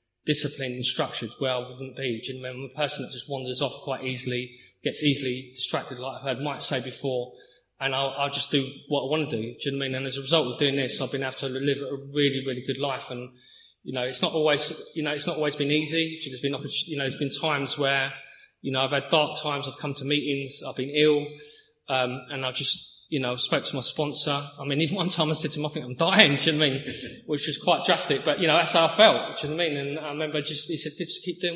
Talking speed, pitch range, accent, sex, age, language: 295 wpm, 130-155 Hz, British, male, 20-39, English